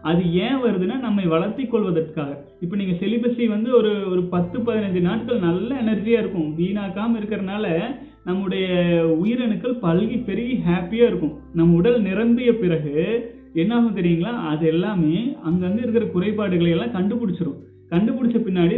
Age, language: 30-49, Tamil